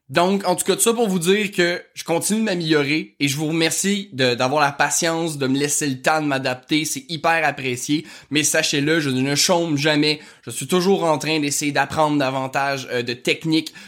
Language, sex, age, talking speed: French, male, 20-39, 205 wpm